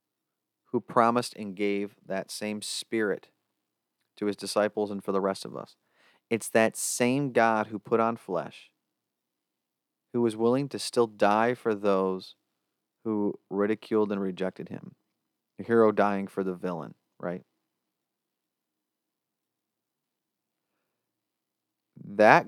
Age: 30-49